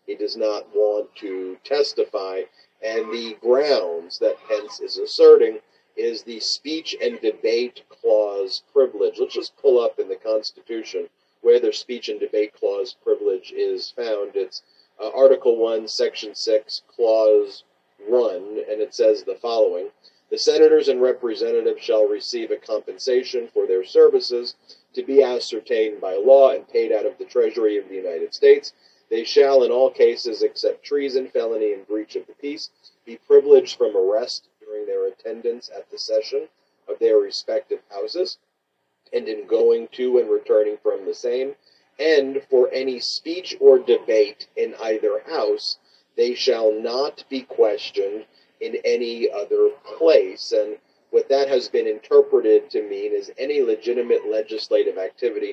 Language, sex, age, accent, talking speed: English, male, 40-59, American, 150 wpm